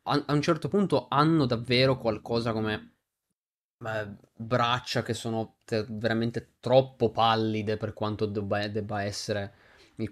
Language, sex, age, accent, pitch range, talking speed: Italian, male, 20-39, native, 105-125 Hz, 120 wpm